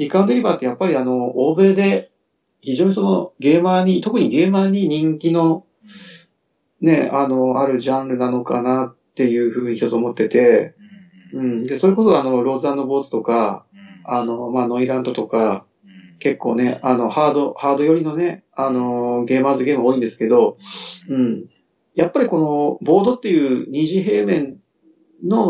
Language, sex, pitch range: Japanese, male, 125-180 Hz